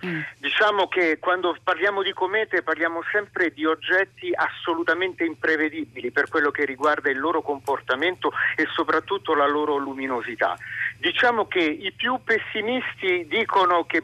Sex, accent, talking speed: male, native, 135 wpm